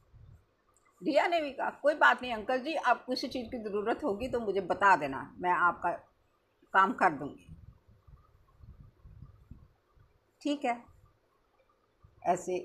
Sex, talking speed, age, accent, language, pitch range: female, 130 wpm, 50-69, native, Hindi, 160-240 Hz